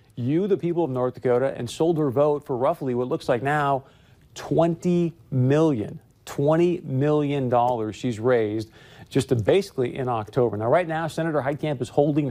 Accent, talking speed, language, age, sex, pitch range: American, 165 wpm, English, 40-59, male, 125-155 Hz